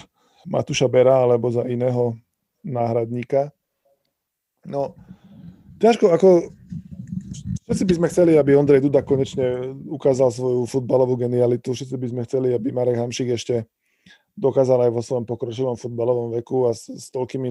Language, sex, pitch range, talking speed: Slovak, male, 120-140 Hz, 135 wpm